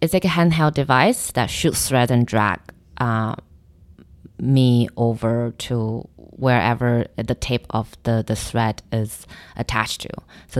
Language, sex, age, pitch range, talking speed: English, female, 20-39, 110-140 Hz, 140 wpm